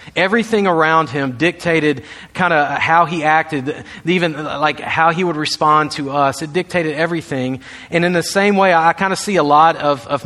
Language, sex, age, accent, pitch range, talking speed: English, male, 40-59, American, 140-175 Hz, 195 wpm